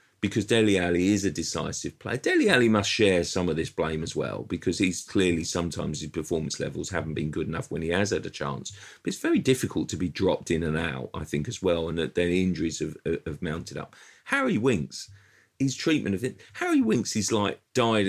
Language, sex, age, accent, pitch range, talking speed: English, male, 40-59, British, 90-120 Hz, 220 wpm